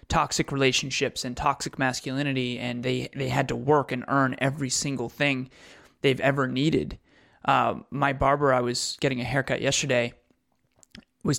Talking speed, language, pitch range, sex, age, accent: 155 wpm, English, 125-150 Hz, male, 20-39, American